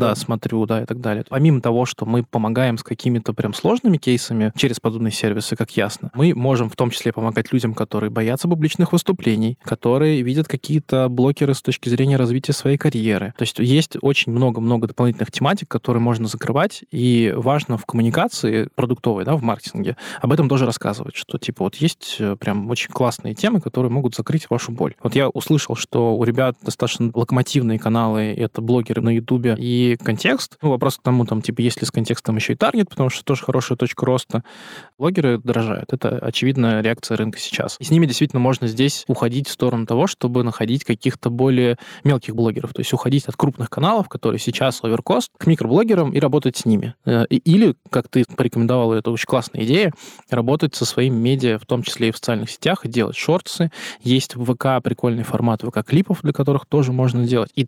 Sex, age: male, 20-39